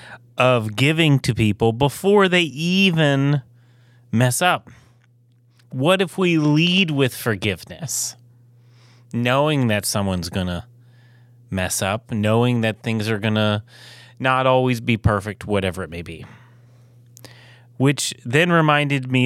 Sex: male